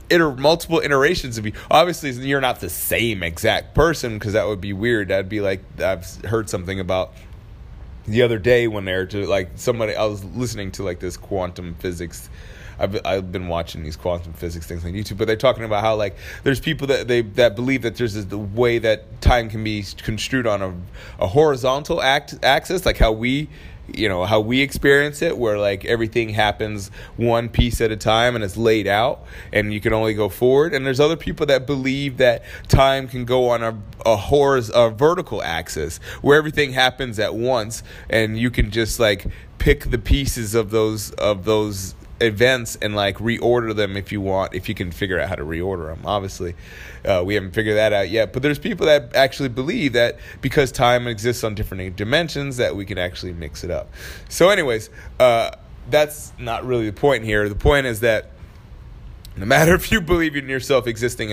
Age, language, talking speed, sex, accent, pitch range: 20-39, English, 205 wpm, male, American, 100-125 Hz